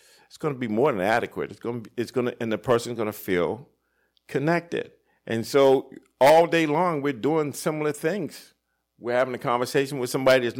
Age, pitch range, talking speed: 50-69, 115-150 Hz, 205 wpm